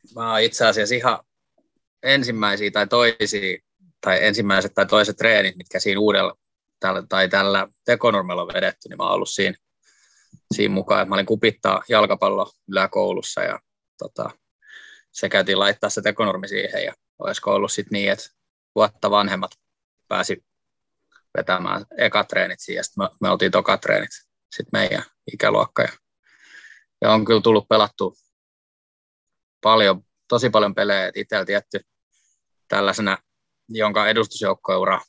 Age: 20-39